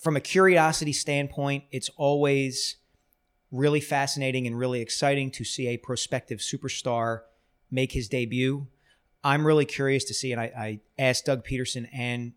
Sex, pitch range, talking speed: male, 120-140 Hz, 150 wpm